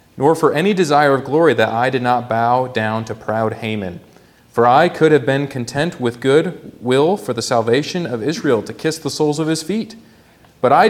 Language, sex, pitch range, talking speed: English, male, 95-130 Hz, 210 wpm